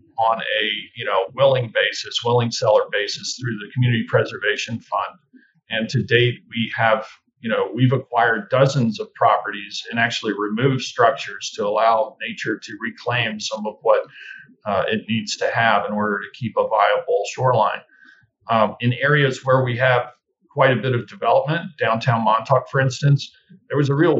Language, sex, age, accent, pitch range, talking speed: English, male, 40-59, American, 115-140 Hz, 170 wpm